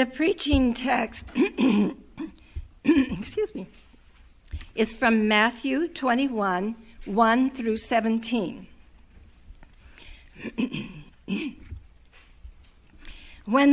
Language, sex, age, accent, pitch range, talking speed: English, female, 60-79, American, 210-275 Hz, 50 wpm